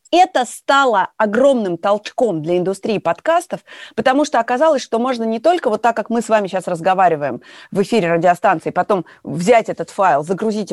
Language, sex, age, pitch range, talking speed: Russian, female, 30-49, 190-240 Hz, 170 wpm